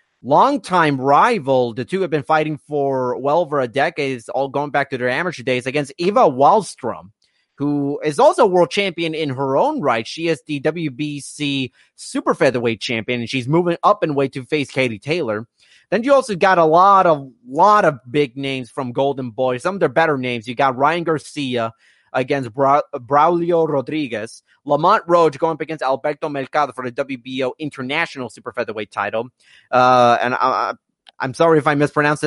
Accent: American